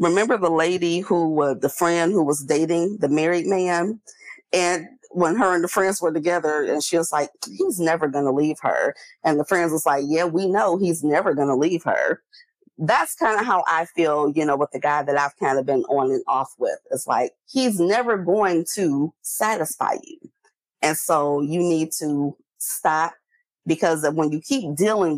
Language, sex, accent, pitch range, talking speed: English, female, American, 150-205 Hz, 205 wpm